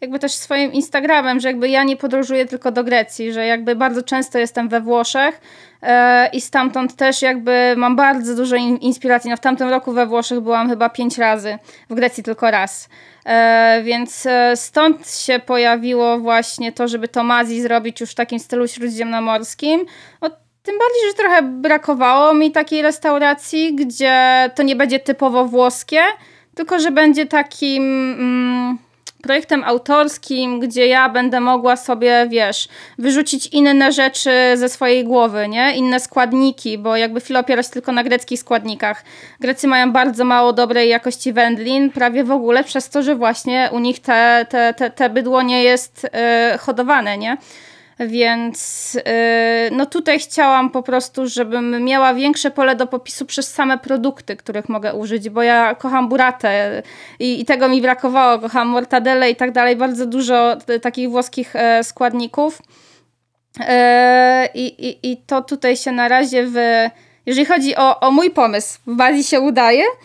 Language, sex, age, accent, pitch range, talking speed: Polish, female, 20-39, native, 240-270 Hz, 155 wpm